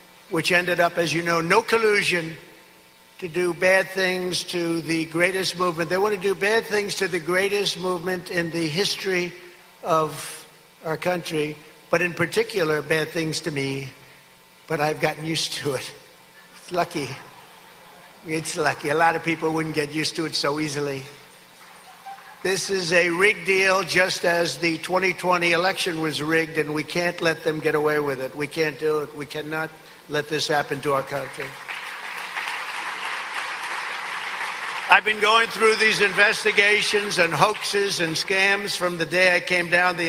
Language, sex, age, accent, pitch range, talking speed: English, male, 60-79, American, 150-180 Hz, 165 wpm